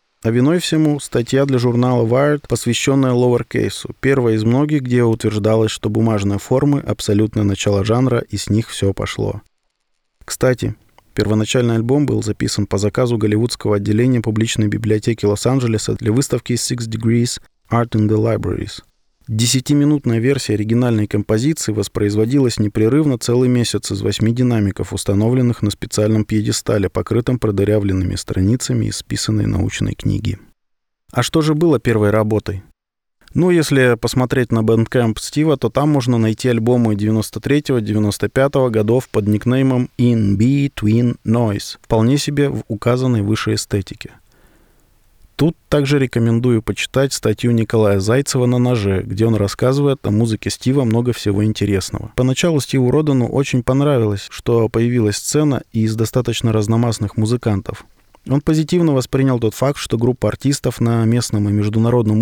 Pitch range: 105-130 Hz